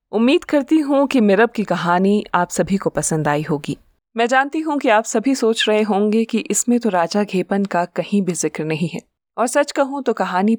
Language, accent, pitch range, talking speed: Hindi, native, 180-245 Hz, 215 wpm